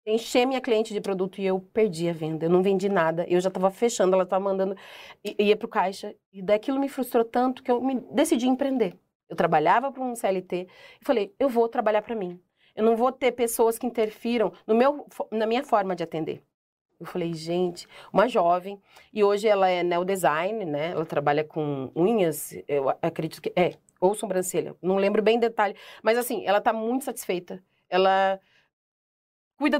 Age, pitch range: 30-49, 190-245 Hz